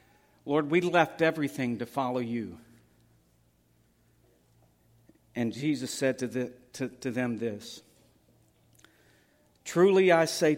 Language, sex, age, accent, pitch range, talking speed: English, male, 60-79, American, 115-160 Hz, 95 wpm